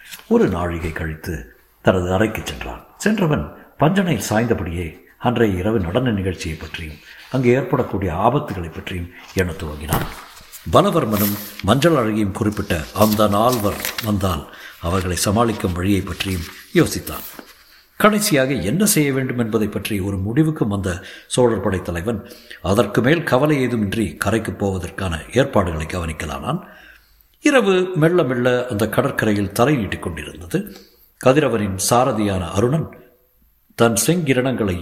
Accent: native